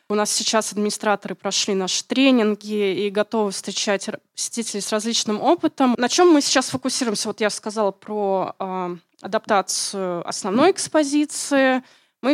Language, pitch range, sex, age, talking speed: Russian, 205-255 Hz, female, 20-39, 135 wpm